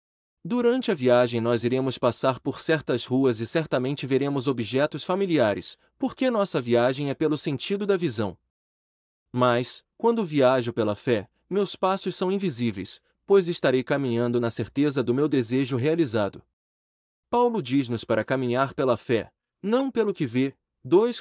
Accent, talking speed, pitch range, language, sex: Brazilian, 145 wpm, 115-175 Hz, Portuguese, male